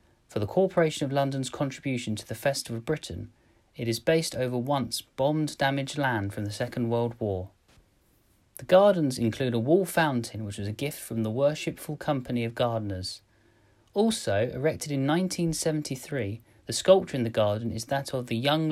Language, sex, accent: English, male, British